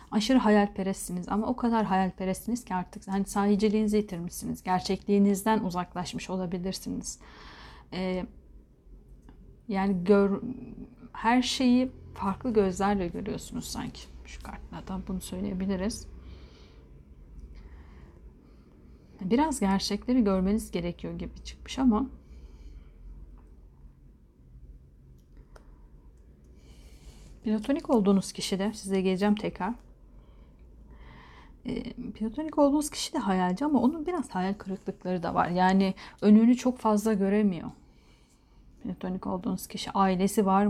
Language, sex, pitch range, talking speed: Turkish, female, 175-220 Hz, 90 wpm